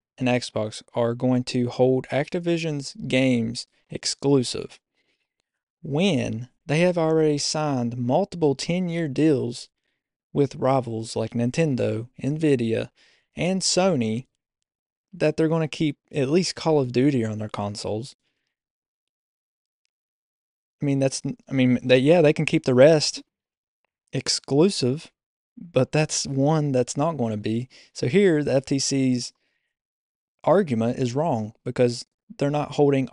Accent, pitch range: American, 120-150 Hz